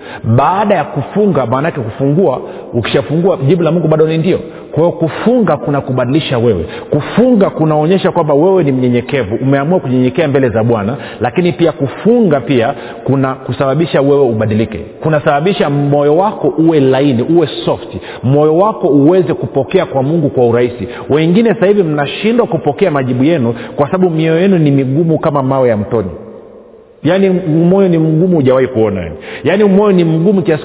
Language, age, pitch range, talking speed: Swahili, 40-59, 125-180 Hz, 160 wpm